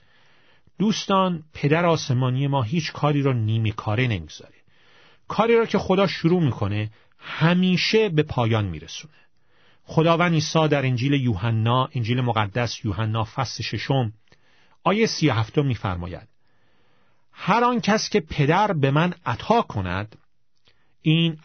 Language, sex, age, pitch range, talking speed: Persian, male, 40-59, 120-175 Hz, 120 wpm